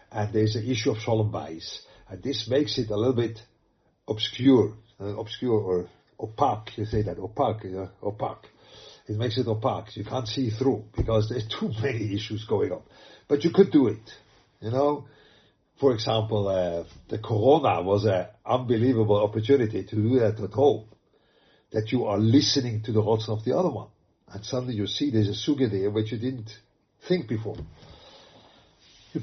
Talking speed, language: 175 wpm, English